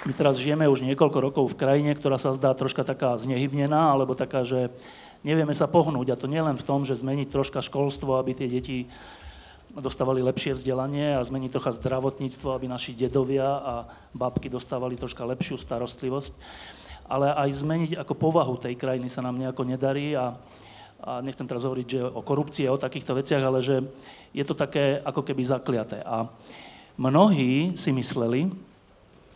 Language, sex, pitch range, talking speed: Slovak, male, 125-145 Hz, 170 wpm